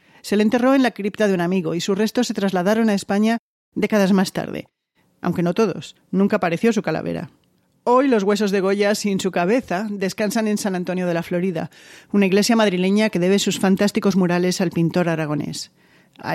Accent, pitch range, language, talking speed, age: Spanish, 175-210 Hz, Spanish, 195 wpm, 40-59